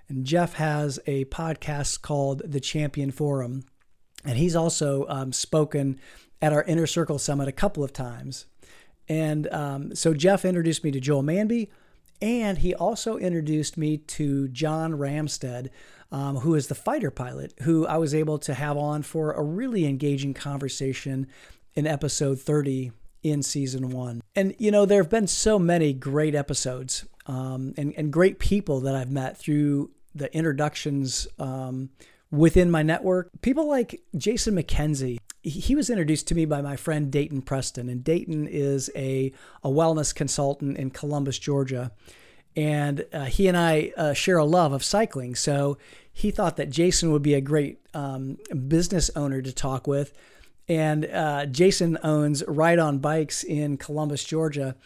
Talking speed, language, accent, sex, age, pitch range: 165 wpm, English, American, male, 40-59, 140-165 Hz